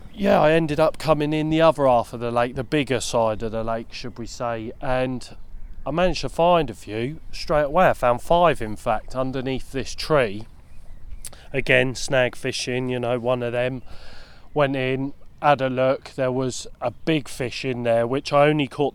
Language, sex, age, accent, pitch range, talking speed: English, male, 20-39, British, 115-135 Hz, 195 wpm